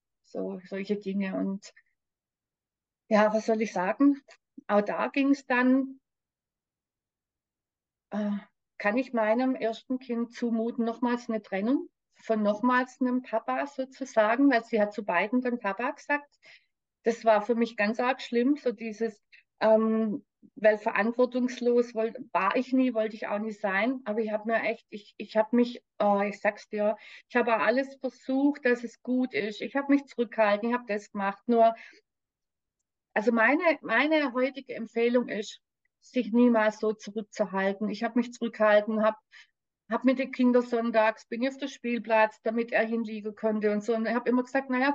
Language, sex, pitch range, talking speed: German, female, 215-255 Hz, 160 wpm